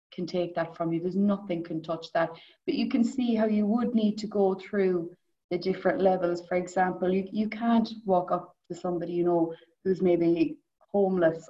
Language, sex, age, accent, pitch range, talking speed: English, female, 20-39, Irish, 180-220 Hz, 195 wpm